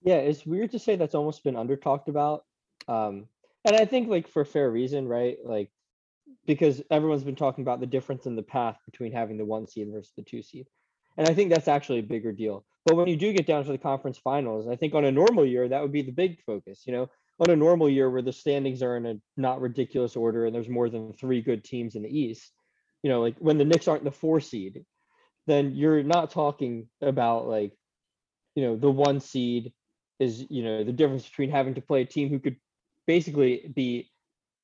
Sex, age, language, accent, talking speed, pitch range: male, 20-39, English, American, 225 wpm, 120-150 Hz